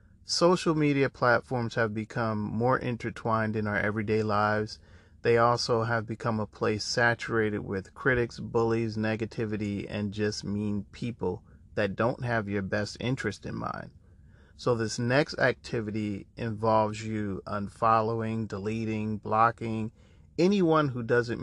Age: 40-59